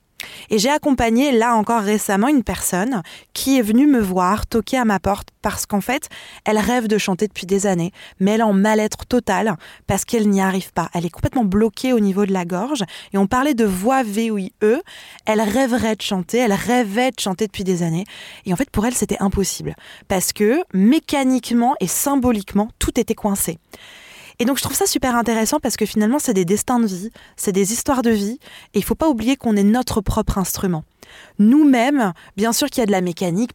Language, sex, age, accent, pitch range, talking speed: French, female, 20-39, French, 195-245 Hz, 215 wpm